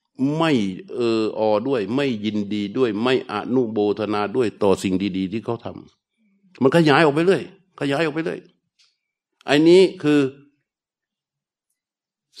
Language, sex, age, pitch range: Thai, male, 60-79, 105-135 Hz